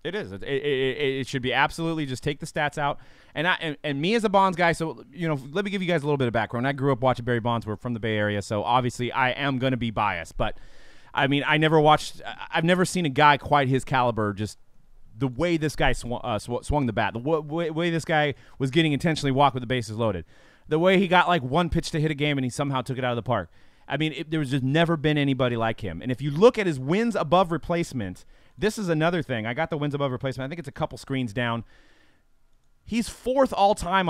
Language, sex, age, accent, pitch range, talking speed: English, male, 30-49, American, 130-170 Hz, 265 wpm